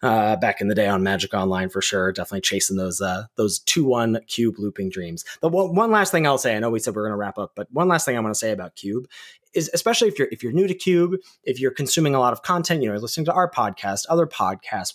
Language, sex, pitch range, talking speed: English, male, 105-170 Hz, 285 wpm